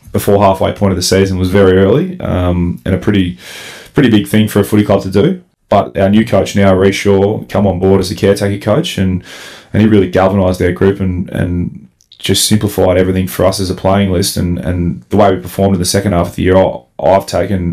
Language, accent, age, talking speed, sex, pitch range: English, Australian, 20-39, 230 wpm, male, 90-100 Hz